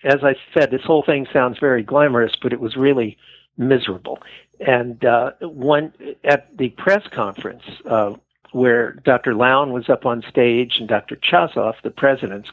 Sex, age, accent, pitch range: male, 60-79, American, 115-140 Hz